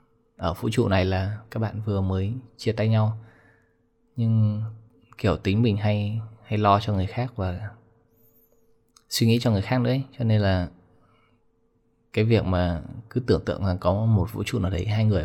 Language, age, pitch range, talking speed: Vietnamese, 20-39, 95-115 Hz, 185 wpm